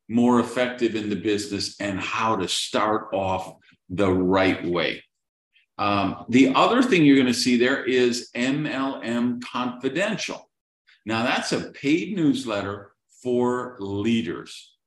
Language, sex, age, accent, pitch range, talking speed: English, male, 50-69, American, 100-130 Hz, 125 wpm